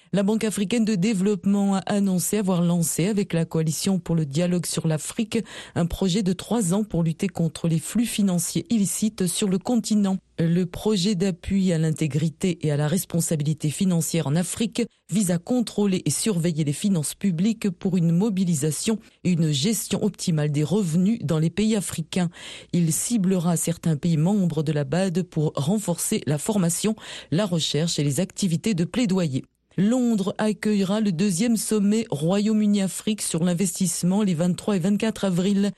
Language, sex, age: French, female, 40-59